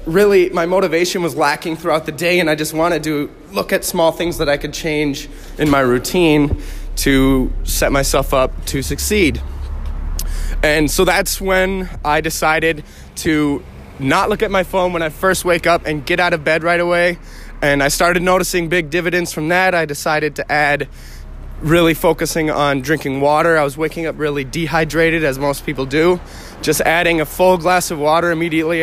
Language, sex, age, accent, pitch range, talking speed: English, male, 20-39, American, 150-180 Hz, 185 wpm